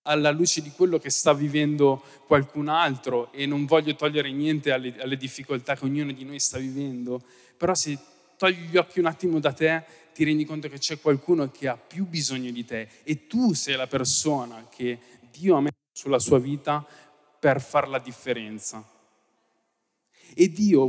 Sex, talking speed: male, 180 wpm